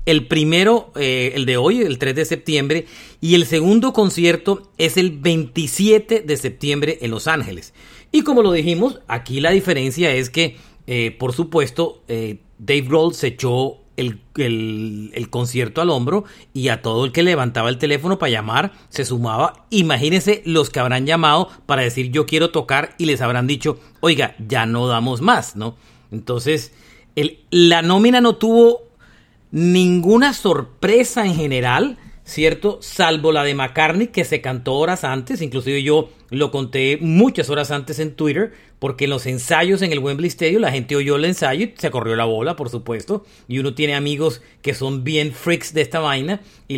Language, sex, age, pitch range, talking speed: Spanish, male, 40-59, 130-170 Hz, 175 wpm